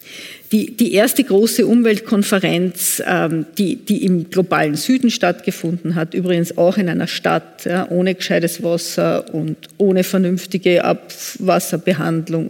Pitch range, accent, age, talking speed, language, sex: 175-215 Hz, Austrian, 50-69, 120 wpm, German, female